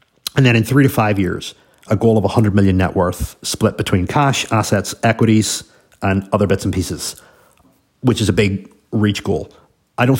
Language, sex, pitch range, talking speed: English, male, 100-125 Hz, 190 wpm